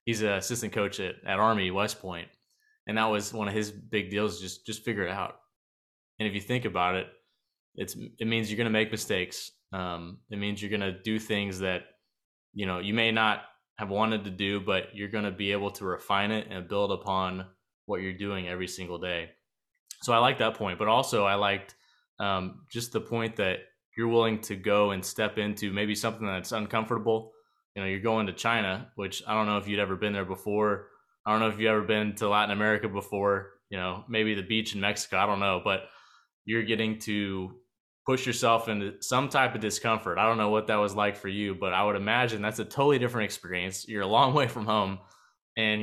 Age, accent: 20-39, American